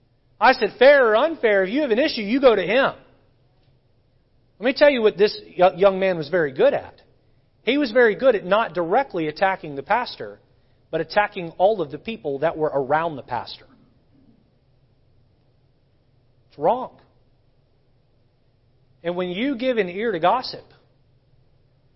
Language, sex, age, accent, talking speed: English, male, 40-59, American, 155 wpm